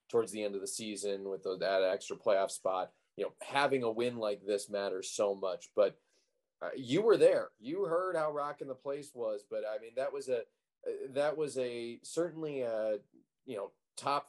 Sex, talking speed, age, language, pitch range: male, 195 wpm, 30-49, English, 110-150 Hz